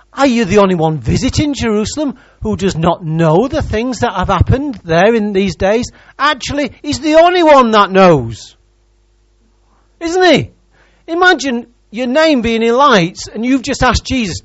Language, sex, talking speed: English, male, 165 wpm